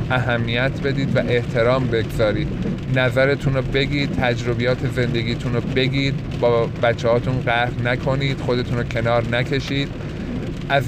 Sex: male